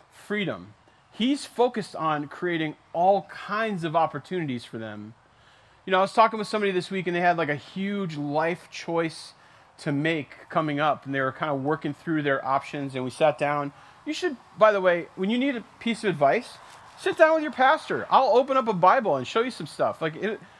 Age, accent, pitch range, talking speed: 30-49, American, 150-200 Hz, 215 wpm